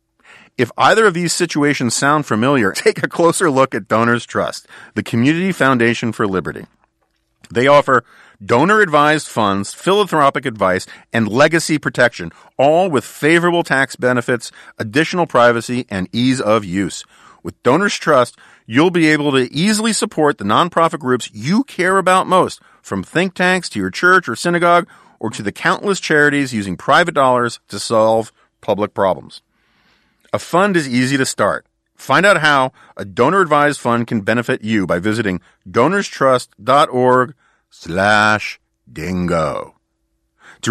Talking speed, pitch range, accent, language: 140 wpm, 115-170 Hz, American, English